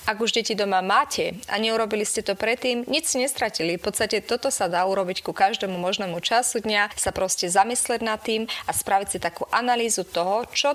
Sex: female